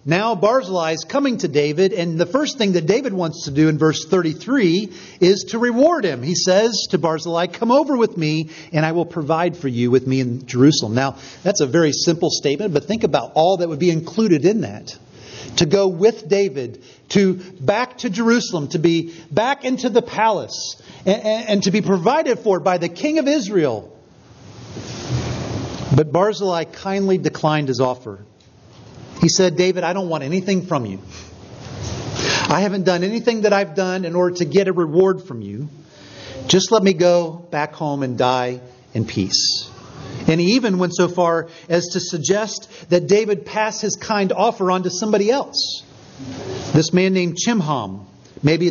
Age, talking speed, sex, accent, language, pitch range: 40-59, 180 wpm, male, American, English, 145-200 Hz